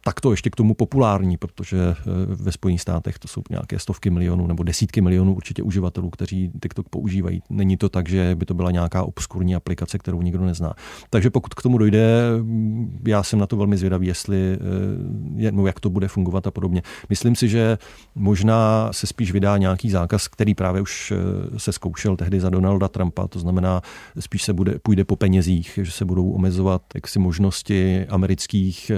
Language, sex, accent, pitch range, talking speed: Czech, male, native, 90-105 Hz, 180 wpm